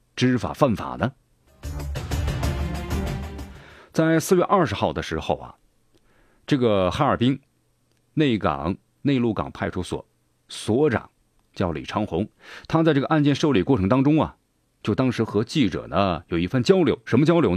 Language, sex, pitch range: Chinese, male, 90-140 Hz